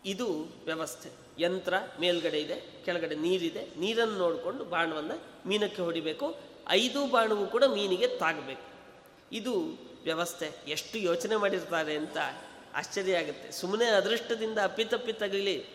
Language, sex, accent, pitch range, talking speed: Kannada, male, native, 160-205 Hz, 110 wpm